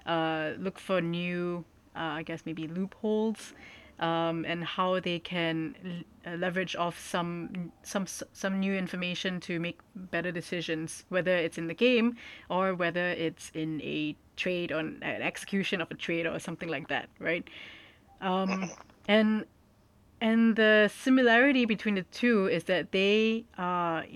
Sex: female